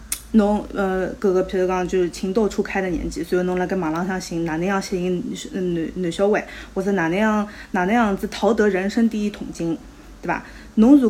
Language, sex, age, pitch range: Chinese, female, 20-39, 185-230 Hz